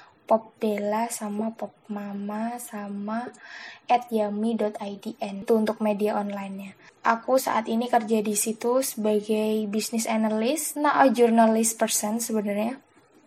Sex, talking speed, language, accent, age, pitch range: female, 115 wpm, Indonesian, native, 10-29, 215-245 Hz